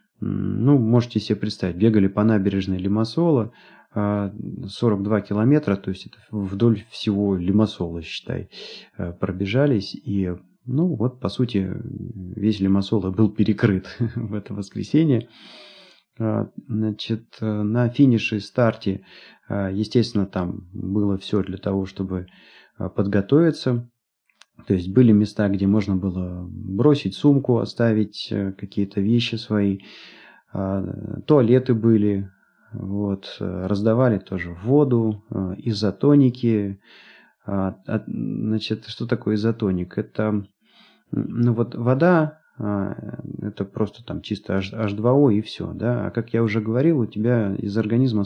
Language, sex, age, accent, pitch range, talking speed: Russian, male, 30-49, native, 100-115 Hz, 105 wpm